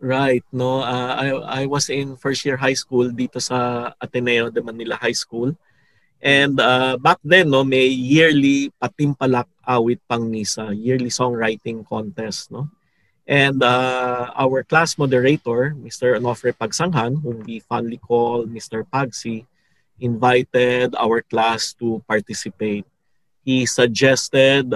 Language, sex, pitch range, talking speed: English, male, 115-140 Hz, 130 wpm